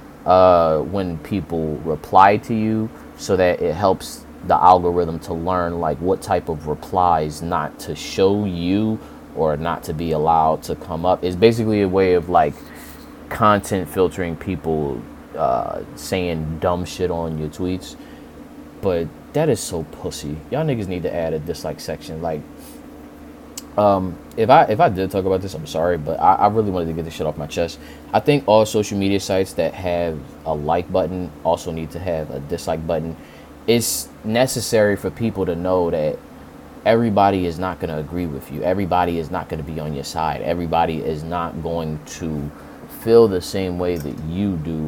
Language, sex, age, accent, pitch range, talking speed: English, male, 20-39, American, 80-95 Hz, 185 wpm